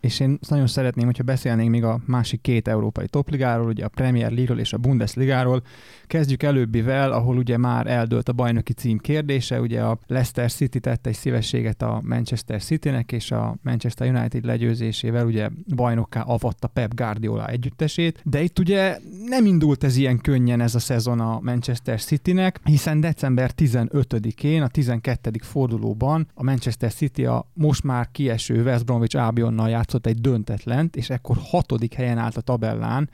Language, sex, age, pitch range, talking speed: Hungarian, male, 30-49, 115-135 Hz, 165 wpm